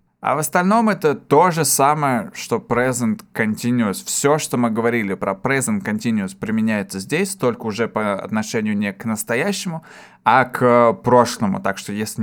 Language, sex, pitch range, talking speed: Russian, male, 110-160 Hz, 155 wpm